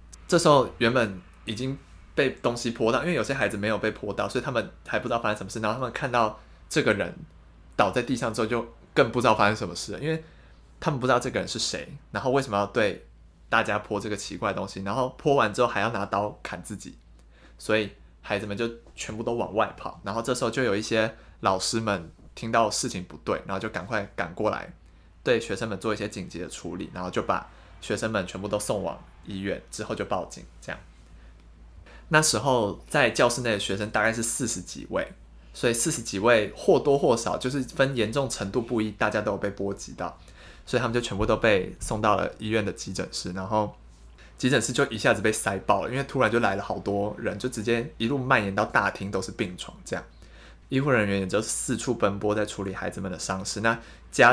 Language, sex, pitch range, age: Chinese, male, 95-115 Hz, 20-39